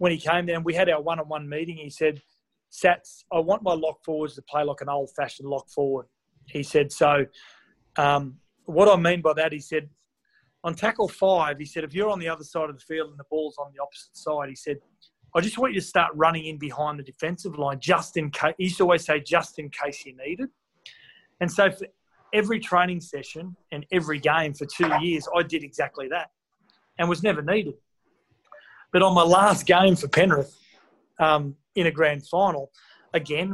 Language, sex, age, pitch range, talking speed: English, male, 30-49, 150-185 Hz, 210 wpm